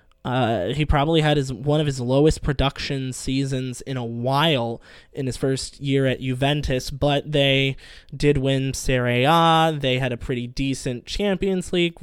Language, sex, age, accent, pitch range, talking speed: English, male, 20-39, American, 135-165 Hz, 165 wpm